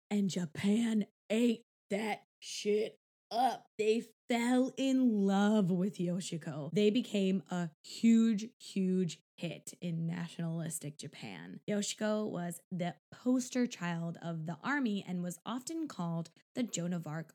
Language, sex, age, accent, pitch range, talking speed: English, female, 20-39, American, 180-245 Hz, 130 wpm